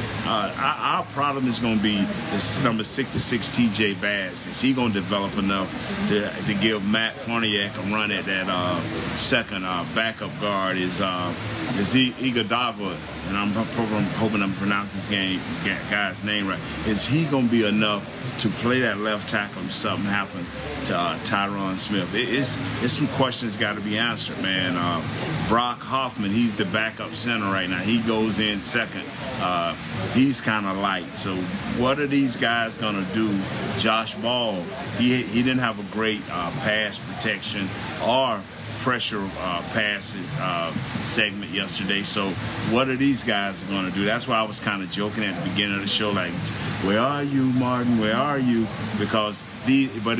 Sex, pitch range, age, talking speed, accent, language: male, 100-120 Hz, 40-59, 175 wpm, American, English